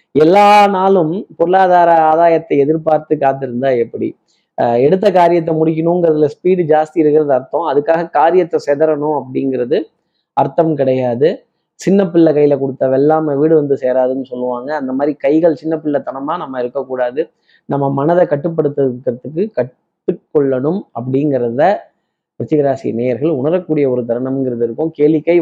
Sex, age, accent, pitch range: male, 20-39, native, 135-170 Hz